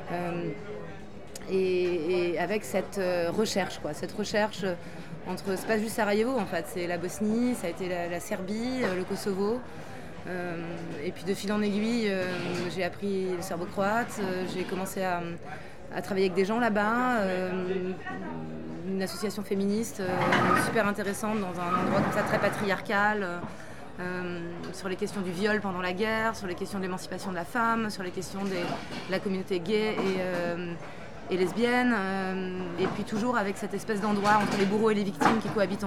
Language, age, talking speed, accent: French, 20-39, 180 wpm, French